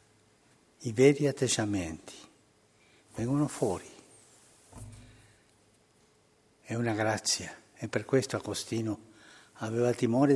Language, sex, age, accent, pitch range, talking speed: Italian, male, 60-79, native, 105-130 Hz, 80 wpm